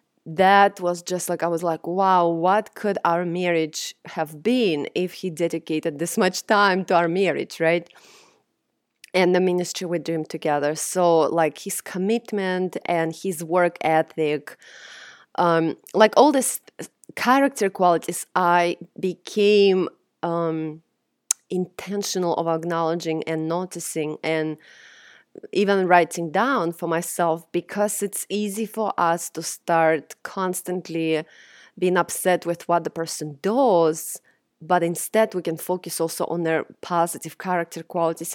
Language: English